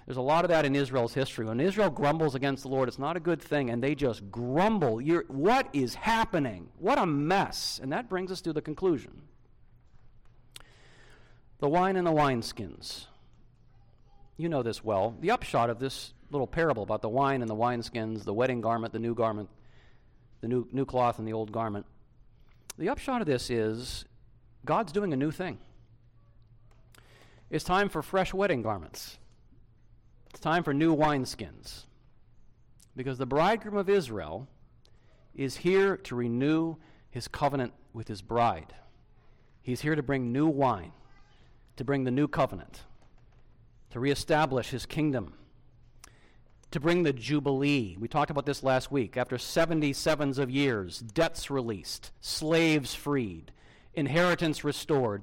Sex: male